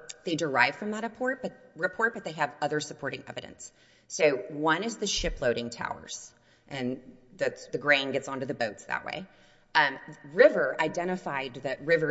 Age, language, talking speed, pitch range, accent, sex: 30-49, English, 170 wpm, 135-175 Hz, American, female